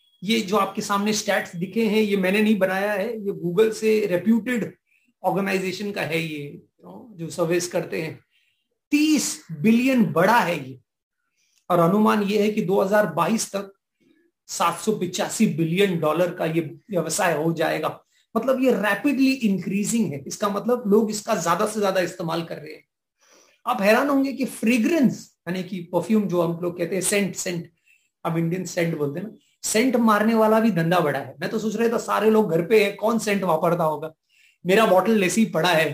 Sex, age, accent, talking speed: male, 40-59, Indian, 145 wpm